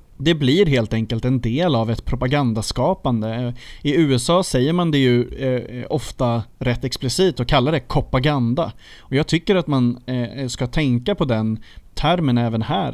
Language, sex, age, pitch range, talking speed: Swedish, male, 30-49, 120-150 Hz, 160 wpm